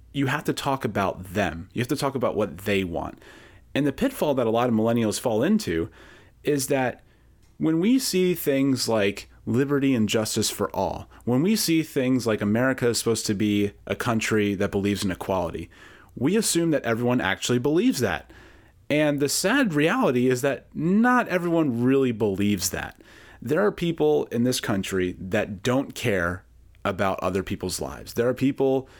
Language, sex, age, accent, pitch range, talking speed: English, male, 30-49, American, 100-145 Hz, 180 wpm